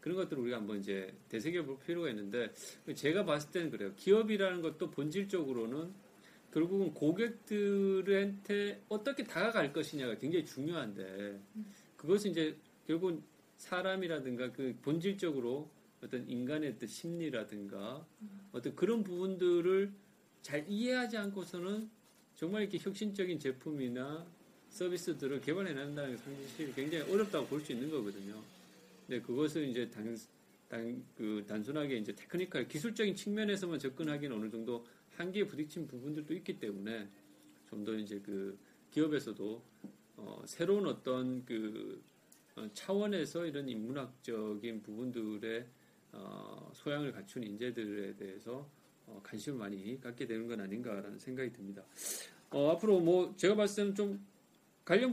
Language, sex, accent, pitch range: Korean, male, native, 115-195 Hz